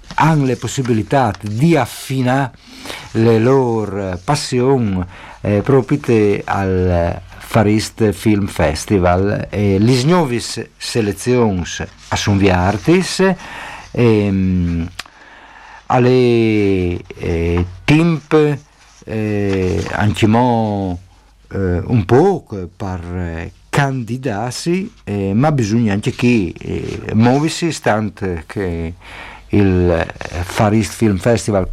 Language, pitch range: Italian, 95-120 Hz